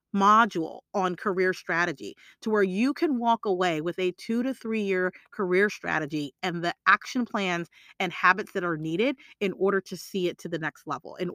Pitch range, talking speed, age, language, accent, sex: 185-245 Hz, 195 wpm, 30-49, English, American, female